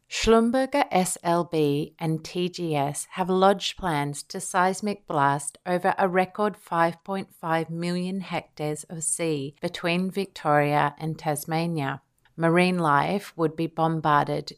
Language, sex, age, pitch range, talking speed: English, female, 30-49, 150-180 Hz, 110 wpm